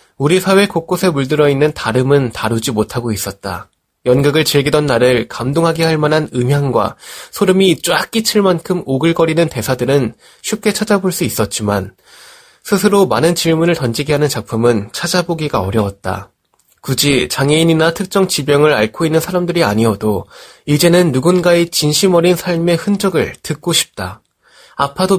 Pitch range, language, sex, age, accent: 125-170 Hz, Korean, male, 20-39, native